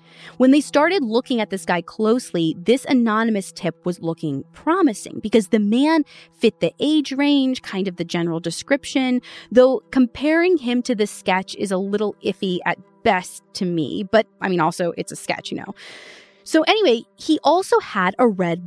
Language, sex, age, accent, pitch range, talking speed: English, female, 20-39, American, 180-260 Hz, 180 wpm